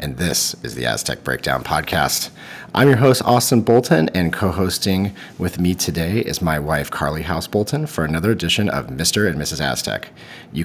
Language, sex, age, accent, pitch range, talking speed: English, male, 40-59, American, 85-110 Hz, 180 wpm